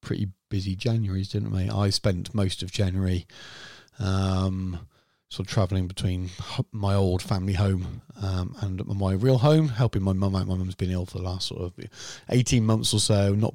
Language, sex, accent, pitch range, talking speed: English, male, British, 95-115 Hz, 185 wpm